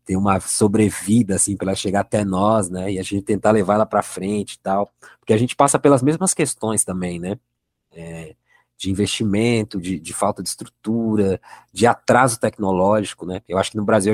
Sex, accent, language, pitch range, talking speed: male, Brazilian, Portuguese, 95-125 Hz, 190 wpm